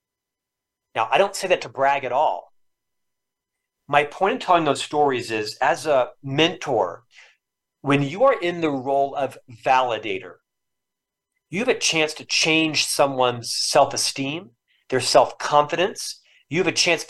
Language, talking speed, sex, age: English, 145 wpm, male, 40-59